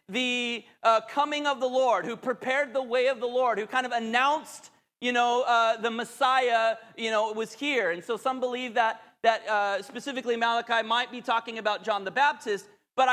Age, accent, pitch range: 30-49, American, 225-260 Hz